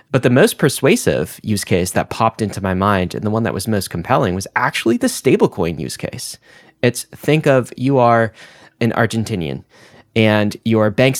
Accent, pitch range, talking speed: American, 100-120 Hz, 180 wpm